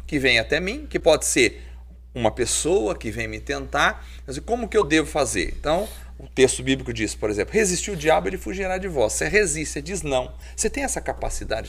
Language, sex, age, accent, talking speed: Portuguese, male, 40-59, Brazilian, 210 wpm